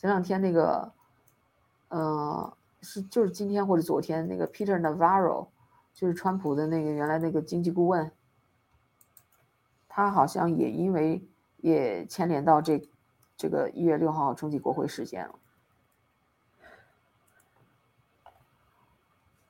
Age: 50-69